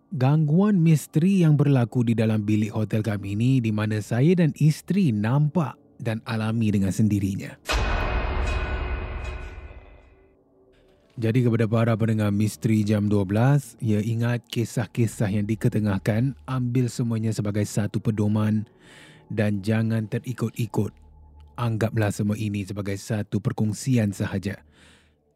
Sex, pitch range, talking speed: male, 100-125 Hz, 110 wpm